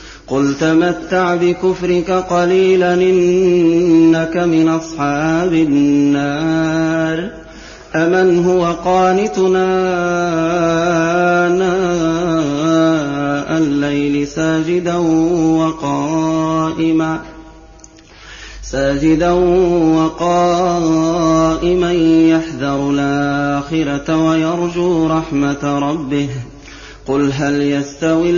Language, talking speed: Arabic, 55 wpm